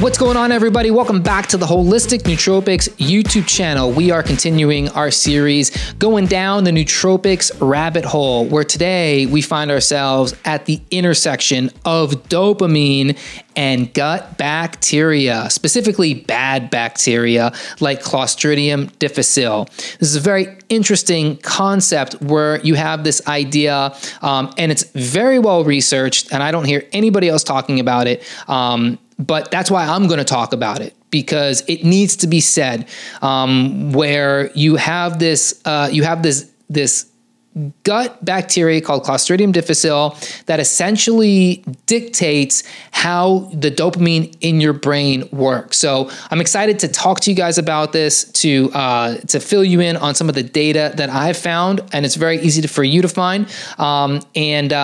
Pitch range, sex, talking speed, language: 145-185 Hz, male, 155 wpm, English